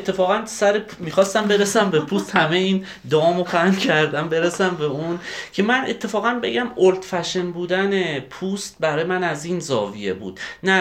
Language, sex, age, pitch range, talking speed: Persian, male, 30-49, 145-200 Hz, 155 wpm